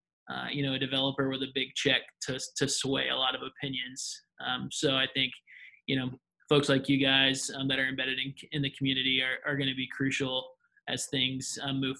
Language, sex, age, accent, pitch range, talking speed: English, male, 20-39, American, 135-145 Hz, 220 wpm